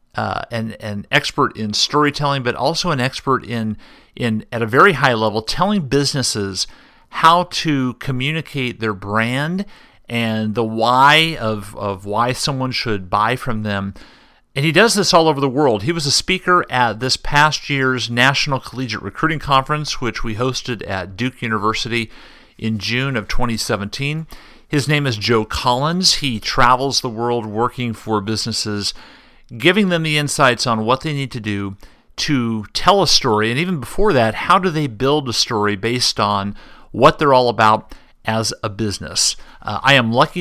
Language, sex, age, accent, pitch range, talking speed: English, male, 40-59, American, 110-140 Hz, 170 wpm